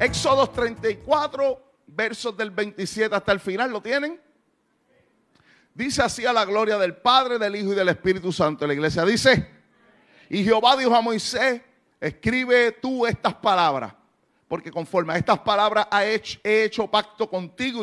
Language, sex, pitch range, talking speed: Spanish, male, 180-245 Hz, 150 wpm